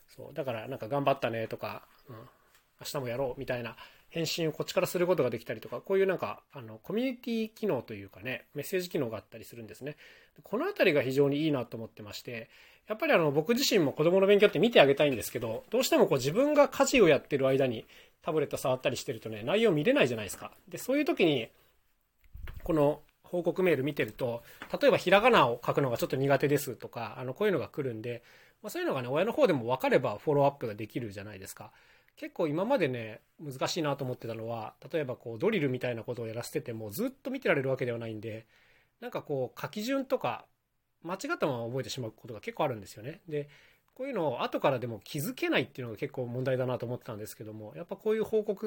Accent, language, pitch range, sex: native, Japanese, 115-185 Hz, male